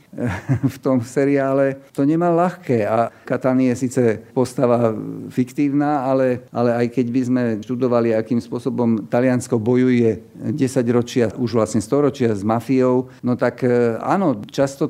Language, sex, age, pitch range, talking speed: Slovak, male, 50-69, 120-135 Hz, 140 wpm